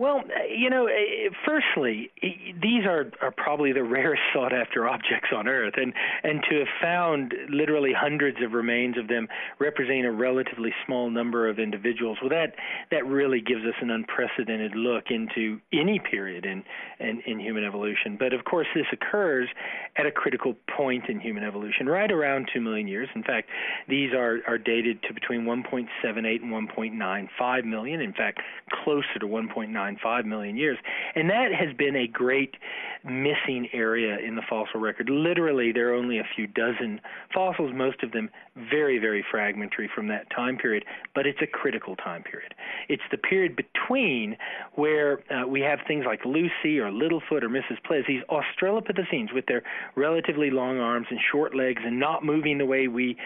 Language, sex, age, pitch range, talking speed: English, male, 40-59, 115-150 Hz, 175 wpm